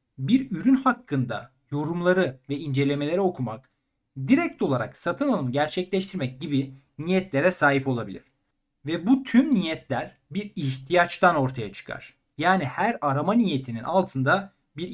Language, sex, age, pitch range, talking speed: Turkish, male, 40-59, 135-210 Hz, 120 wpm